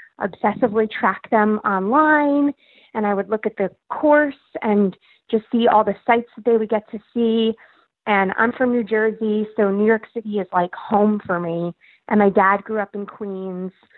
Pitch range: 190-225 Hz